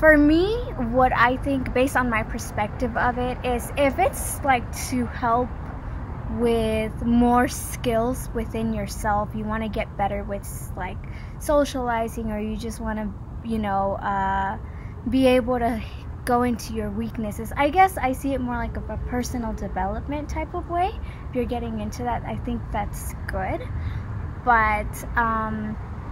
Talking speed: 160 wpm